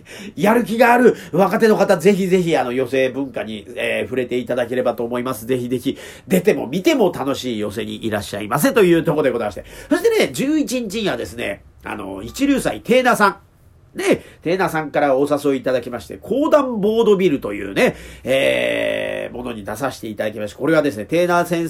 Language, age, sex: Japanese, 40-59, male